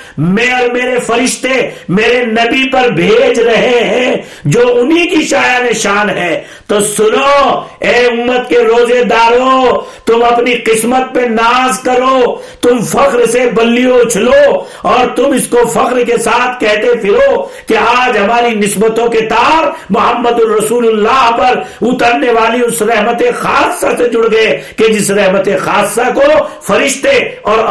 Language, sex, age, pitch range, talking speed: Urdu, male, 50-69, 210-265 Hz, 145 wpm